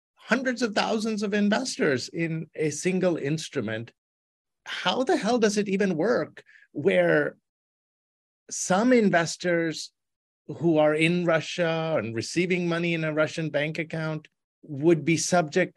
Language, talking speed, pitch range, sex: English, 130 wpm, 135-180 Hz, male